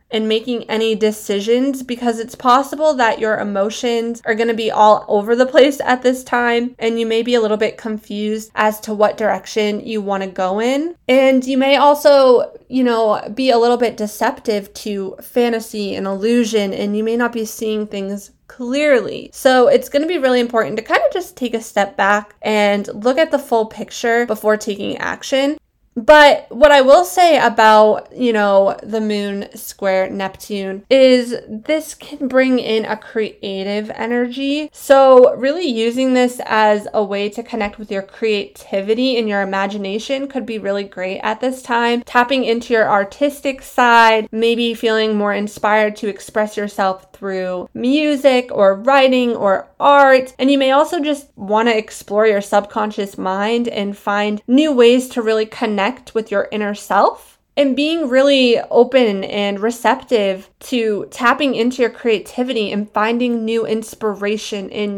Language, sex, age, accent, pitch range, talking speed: English, female, 20-39, American, 210-255 Hz, 170 wpm